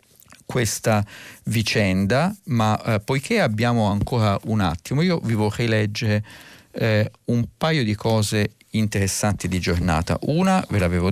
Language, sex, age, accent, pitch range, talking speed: Italian, male, 50-69, native, 95-120 Hz, 130 wpm